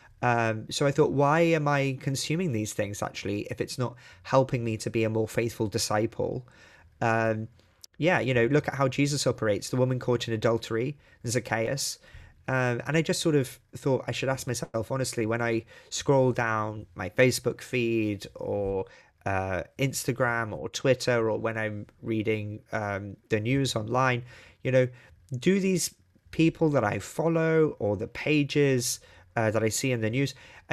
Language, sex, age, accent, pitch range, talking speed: English, male, 20-39, British, 110-140 Hz, 170 wpm